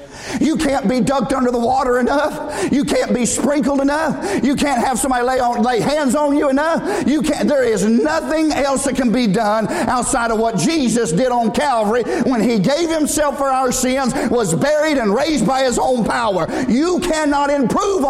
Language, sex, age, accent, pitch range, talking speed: English, male, 50-69, American, 230-290 Hz, 195 wpm